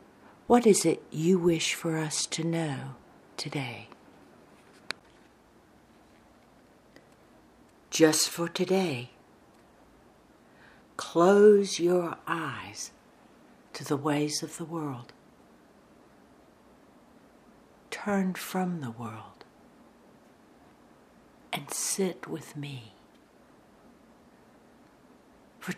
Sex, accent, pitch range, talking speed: female, American, 150-185 Hz, 70 wpm